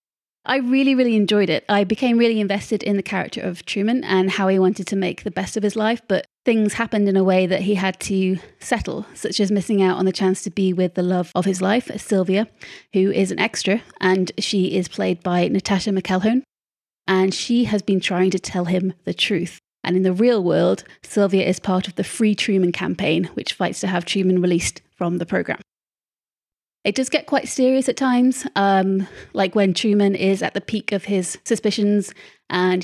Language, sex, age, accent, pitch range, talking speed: English, female, 30-49, British, 190-215 Hz, 210 wpm